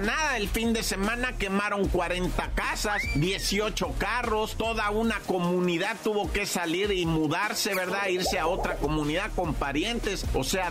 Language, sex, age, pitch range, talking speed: Spanish, male, 50-69, 155-215 Hz, 150 wpm